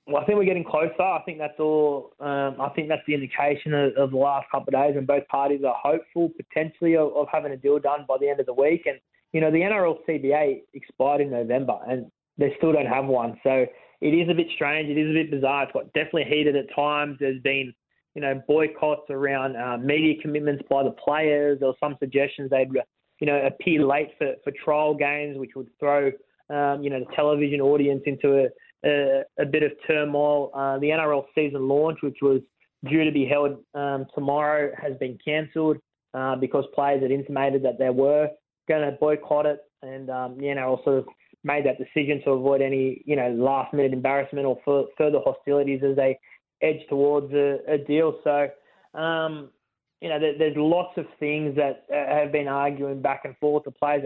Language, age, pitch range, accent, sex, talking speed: English, 20-39, 135-150 Hz, Australian, male, 205 wpm